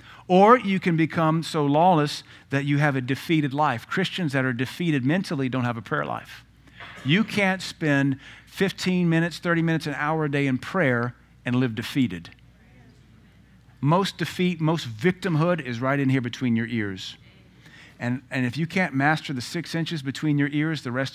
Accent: American